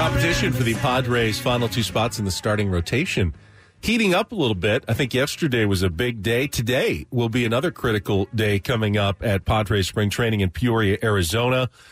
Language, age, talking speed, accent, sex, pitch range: English, 40-59, 195 wpm, American, male, 105-130 Hz